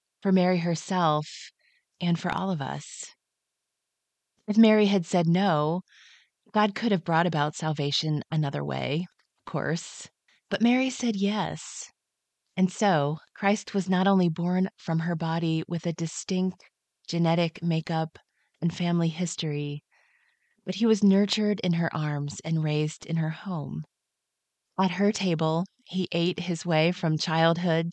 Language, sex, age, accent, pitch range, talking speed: English, female, 30-49, American, 160-200 Hz, 140 wpm